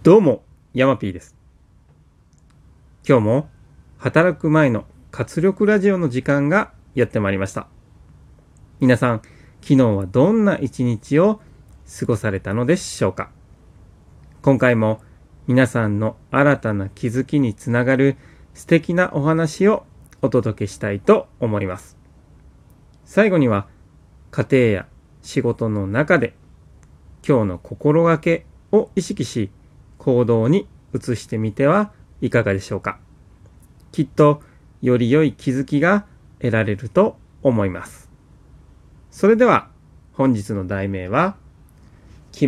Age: 30-49